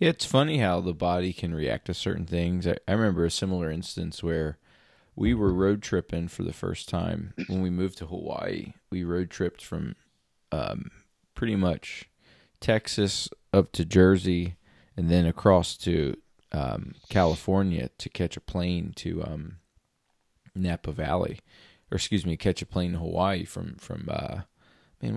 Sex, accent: male, American